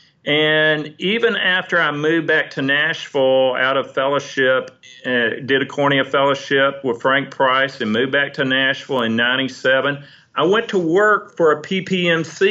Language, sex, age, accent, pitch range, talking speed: English, male, 40-59, American, 135-155 Hz, 160 wpm